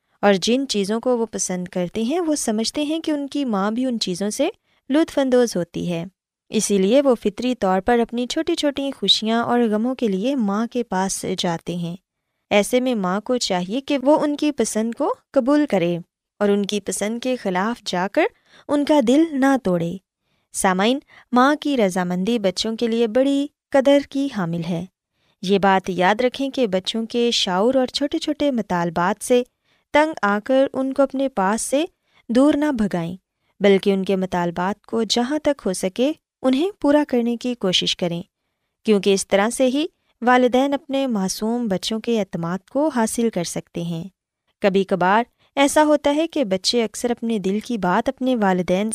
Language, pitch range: Urdu, 190-275 Hz